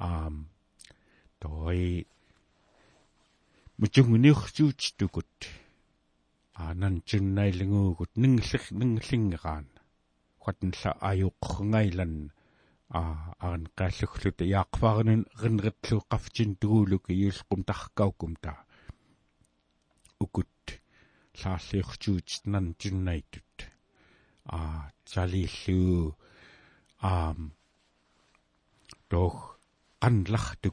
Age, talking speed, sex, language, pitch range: 60-79, 45 wpm, male, English, 85-110 Hz